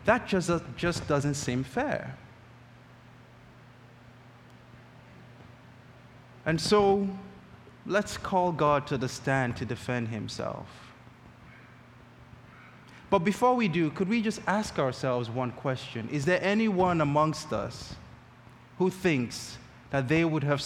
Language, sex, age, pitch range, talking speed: English, male, 20-39, 120-185 Hz, 115 wpm